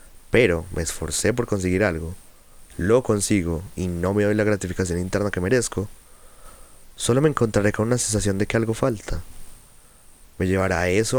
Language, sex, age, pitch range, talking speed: Spanish, male, 20-39, 90-110 Hz, 160 wpm